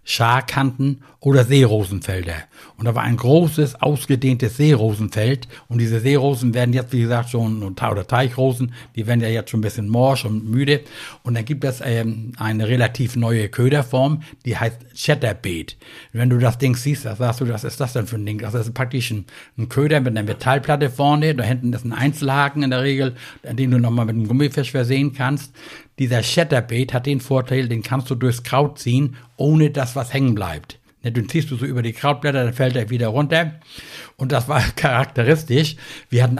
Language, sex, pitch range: German, male, 115-140 Hz